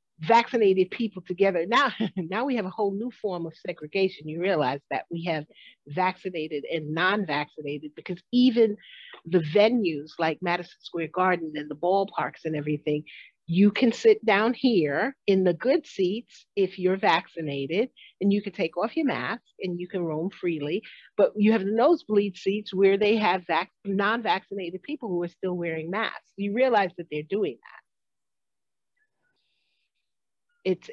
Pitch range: 165-215 Hz